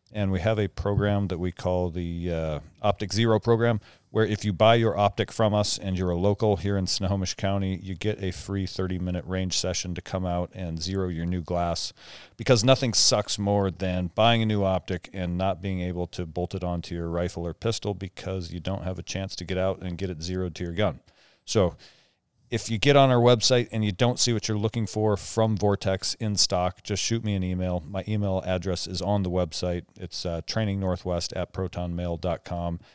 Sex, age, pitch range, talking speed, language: male, 40-59, 90-105 Hz, 210 wpm, English